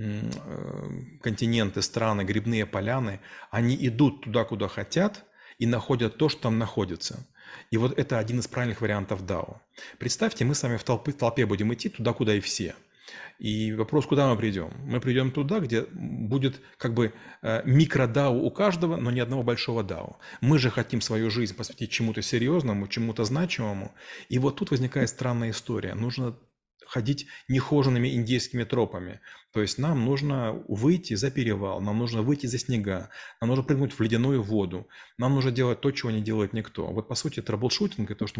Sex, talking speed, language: male, 175 wpm, Russian